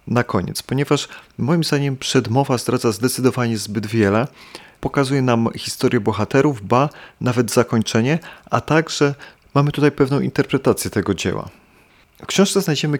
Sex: male